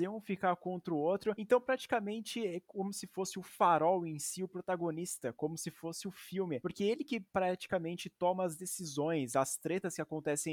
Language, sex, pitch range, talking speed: Portuguese, male, 150-200 Hz, 190 wpm